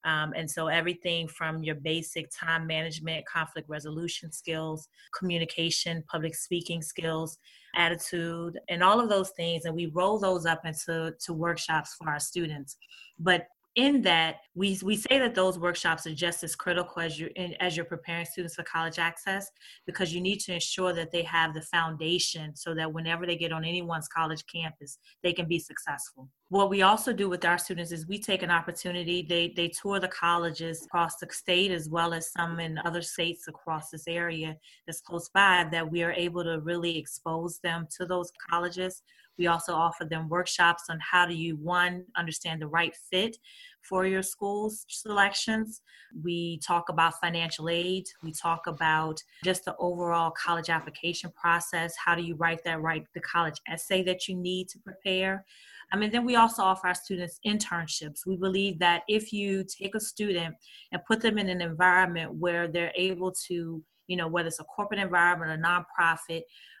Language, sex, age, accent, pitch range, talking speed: English, female, 20-39, American, 165-185 Hz, 185 wpm